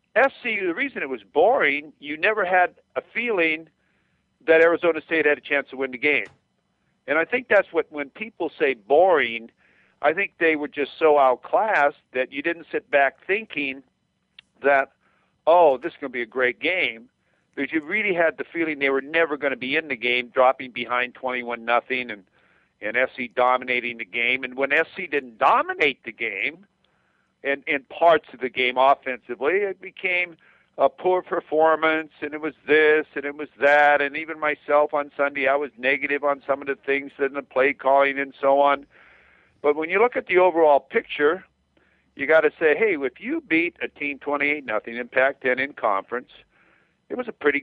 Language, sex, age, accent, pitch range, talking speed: English, male, 50-69, American, 135-170 Hz, 195 wpm